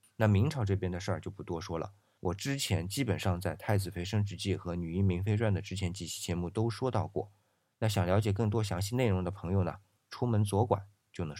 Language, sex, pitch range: Chinese, male, 95-110 Hz